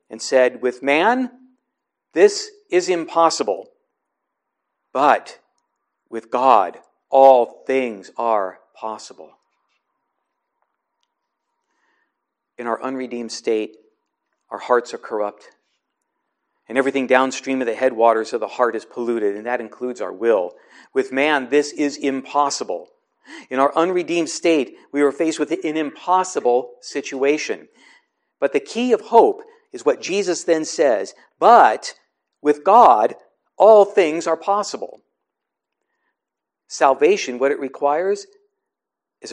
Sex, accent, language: male, American, English